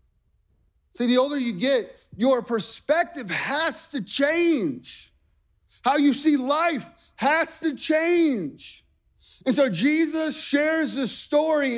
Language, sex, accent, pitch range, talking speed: English, male, American, 165-265 Hz, 115 wpm